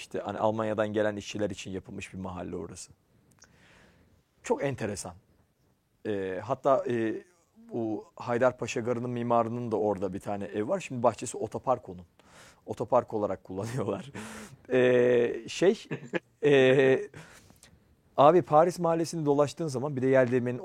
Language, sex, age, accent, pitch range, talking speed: Turkish, male, 40-59, native, 100-135 Hz, 125 wpm